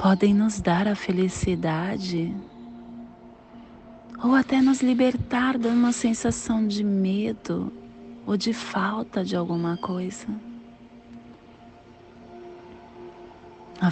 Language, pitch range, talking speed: Portuguese, 130-205 Hz, 90 wpm